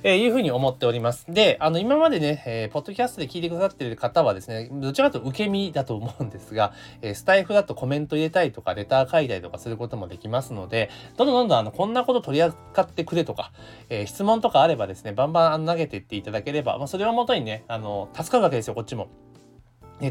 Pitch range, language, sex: 110-170 Hz, Japanese, male